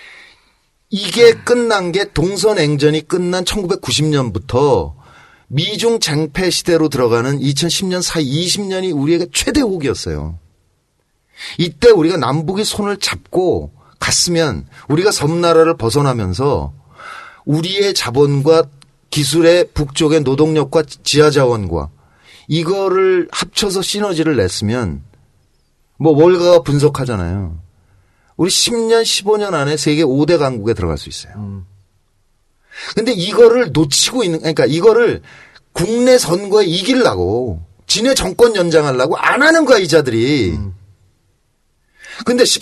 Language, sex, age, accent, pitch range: Korean, male, 40-59, native, 130-205 Hz